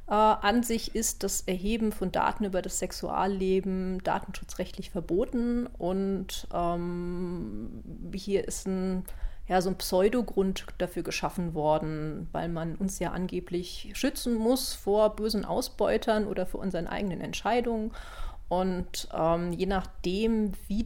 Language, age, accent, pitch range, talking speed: German, 30-49, German, 170-210 Hz, 120 wpm